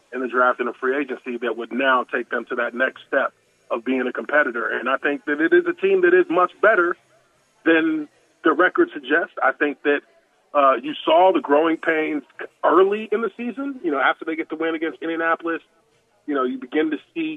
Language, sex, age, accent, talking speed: English, male, 30-49, American, 220 wpm